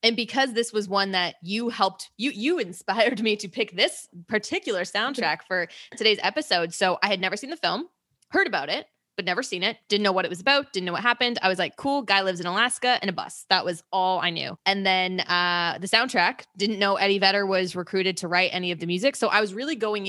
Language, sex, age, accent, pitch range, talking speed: English, female, 20-39, American, 180-235 Hz, 245 wpm